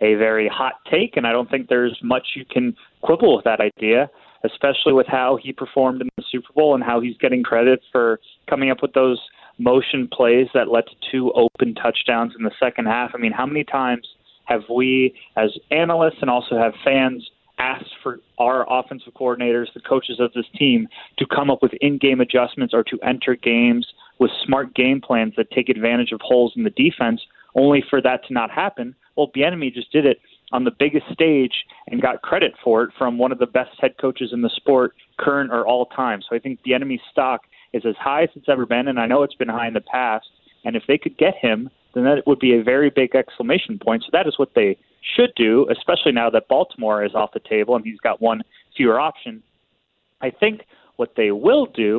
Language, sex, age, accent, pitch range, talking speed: English, male, 30-49, American, 115-140 Hz, 220 wpm